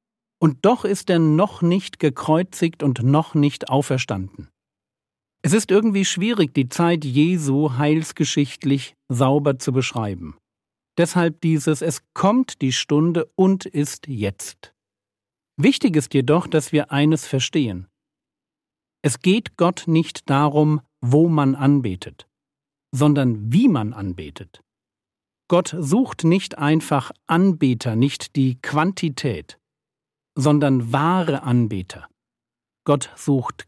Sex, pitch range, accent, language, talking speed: male, 130-170 Hz, German, German, 110 wpm